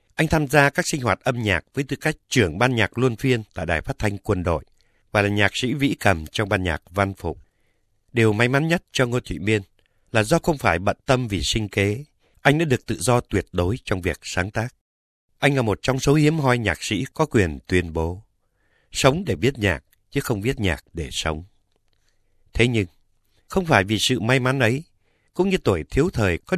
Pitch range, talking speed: 90-125 Hz, 225 wpm